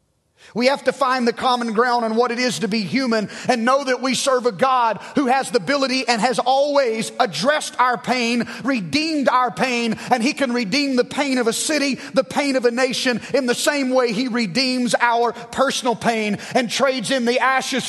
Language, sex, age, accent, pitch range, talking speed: English, male, 30-49, American, 185-260 Hz, 210 wpm